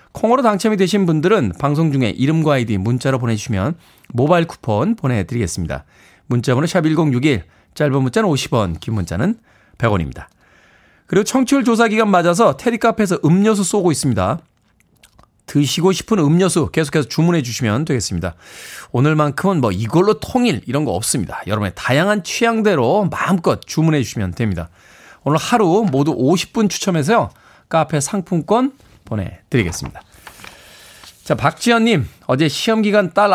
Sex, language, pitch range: male, Korean, 120-180 Hz